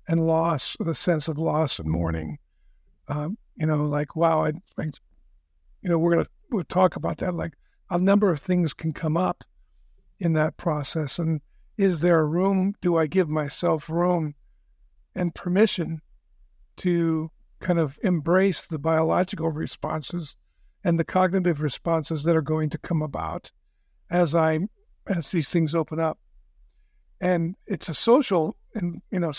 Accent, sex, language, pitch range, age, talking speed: American, male, English, 155-180 Hz, 50-69, 160 wpm